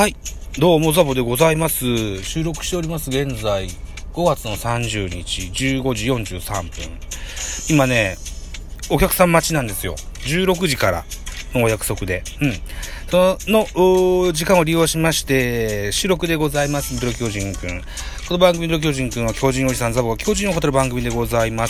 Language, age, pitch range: Japanese, 40-59, 110-160 Hz